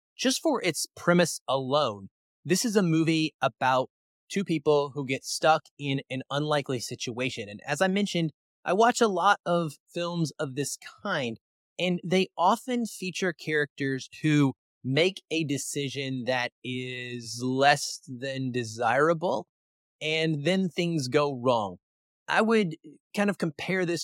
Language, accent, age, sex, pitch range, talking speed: English, American, 30-49, male, 130-175 Hz, 140 wpm